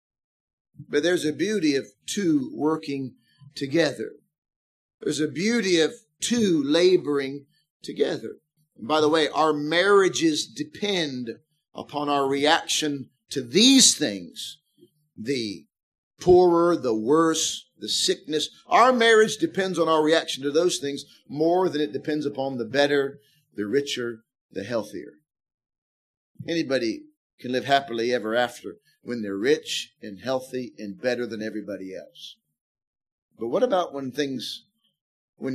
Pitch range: 140-170 Hz